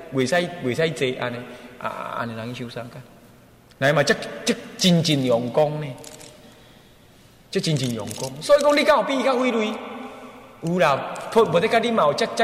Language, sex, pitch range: Chinese, male, 130-200 Hz